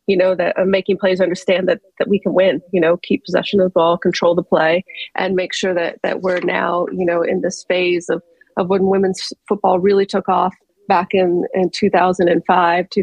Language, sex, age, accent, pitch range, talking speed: English, female, 30-49, American, 175-195 Hz, 230 wpm